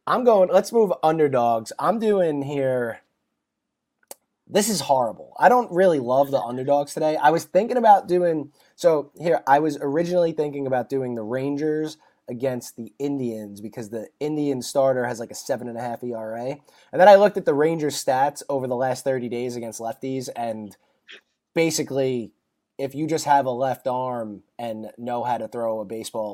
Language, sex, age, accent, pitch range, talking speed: English, male, 20-39, American, 120-155 Hz, 180 wpm